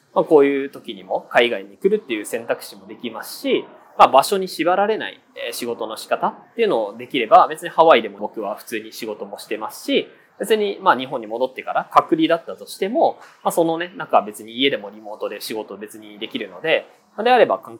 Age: 20-39